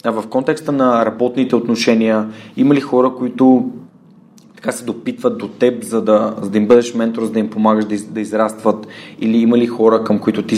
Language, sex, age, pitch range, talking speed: Bulgarian, male, 20-39, 105-120 Hz, 195 wpm